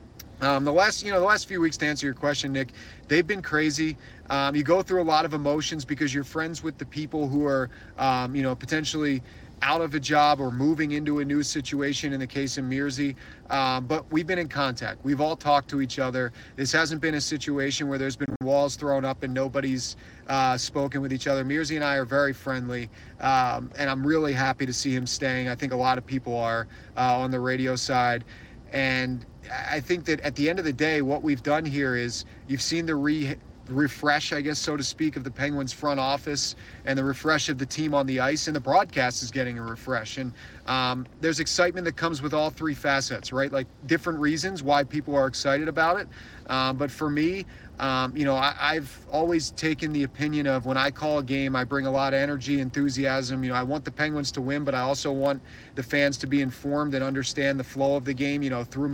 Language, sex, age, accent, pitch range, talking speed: English, male, 30-49, American, 130-150 Hz, 230 wpm